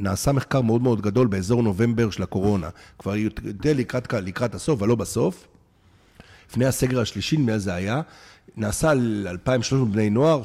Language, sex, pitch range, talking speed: Hebrew, male, 100-140 Hz, 160 wpm